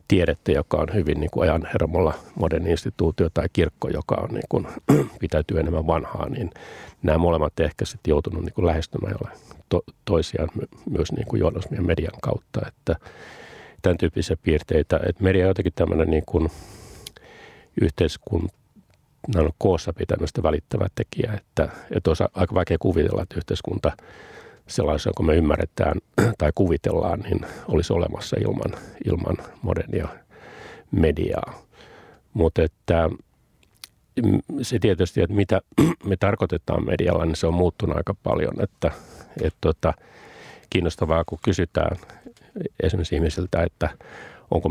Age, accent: 50-69, native